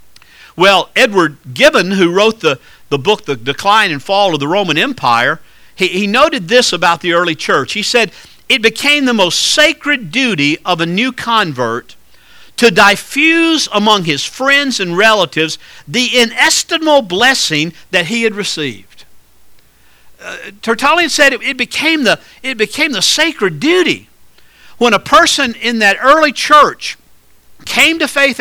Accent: American